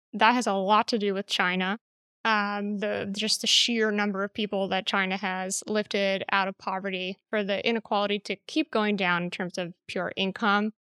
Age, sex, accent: 10-29, female, American